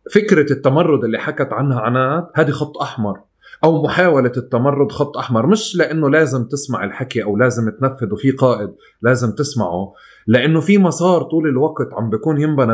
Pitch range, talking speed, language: 110-145 Hz, 160 wpm, Arabic